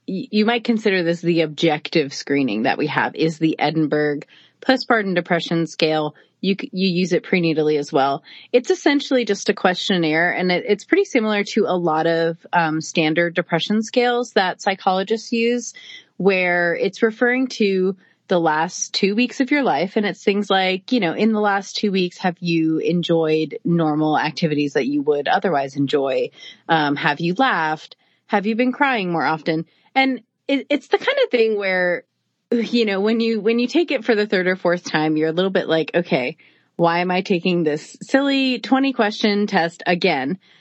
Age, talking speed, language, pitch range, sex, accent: 30-49, 185 wpm, English, 165-225 Hz, female, American